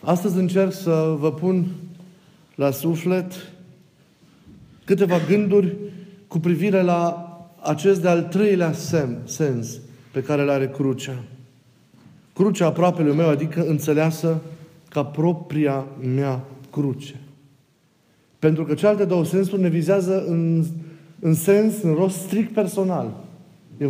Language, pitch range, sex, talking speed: Romanian, 150-185 Hz, male, 115 wpm